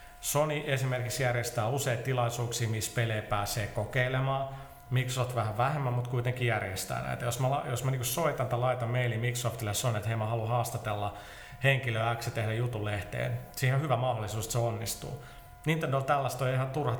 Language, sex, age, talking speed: Finnish, male, 30-49, 170 wpm